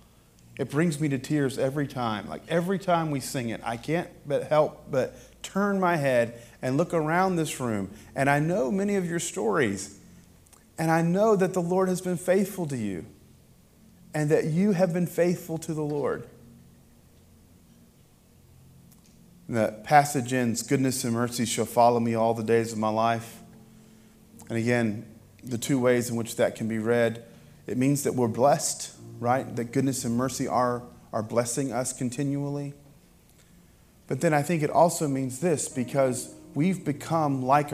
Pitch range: 115-150 Hz